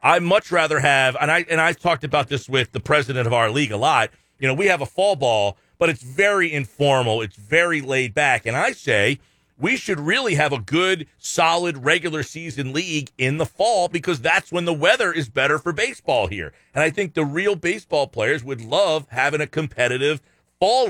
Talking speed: 205 wpm